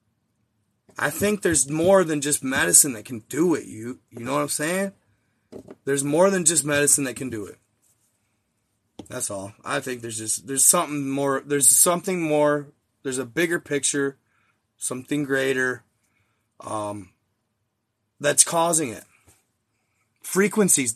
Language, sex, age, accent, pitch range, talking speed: English, male, 30-49, American, 110-150 Hz, 140 wpm